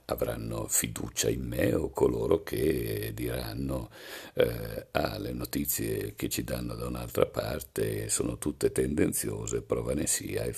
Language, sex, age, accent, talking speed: Italian, male, 60-79, native, 140 wpm